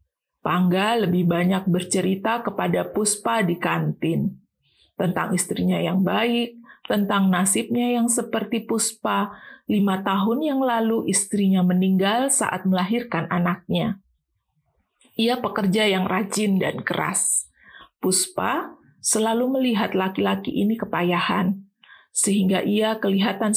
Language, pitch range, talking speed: Indonesian, 185-230 Hz, 105 wpm